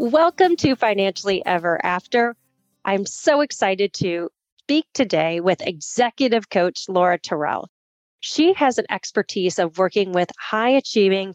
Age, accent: 30-49, American